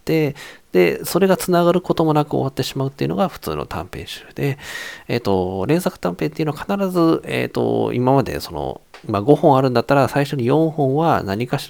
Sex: male